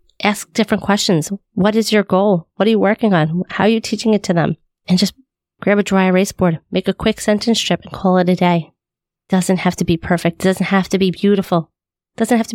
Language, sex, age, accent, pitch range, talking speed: English, female, 30-49, American, 165-195 Hz, 235 wpm